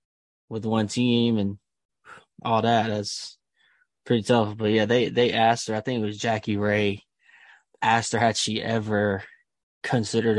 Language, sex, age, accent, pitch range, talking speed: English, male, 10-29, American, 105-120 Hz, 155 wpm